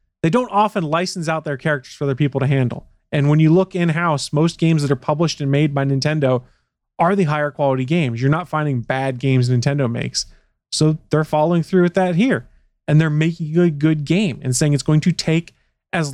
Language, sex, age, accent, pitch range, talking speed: English, male, 30-49, American, 140-175 Hz, 220 wpm